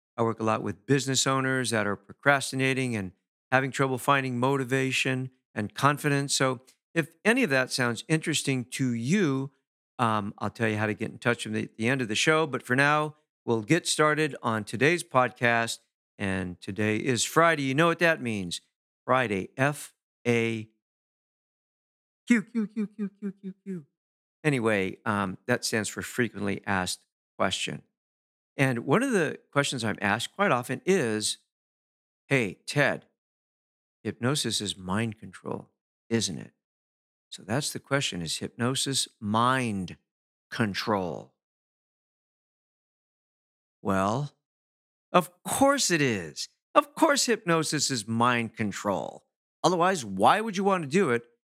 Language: English